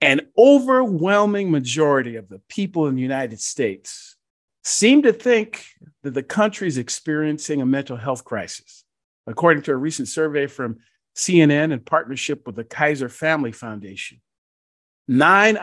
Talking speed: 140 wpm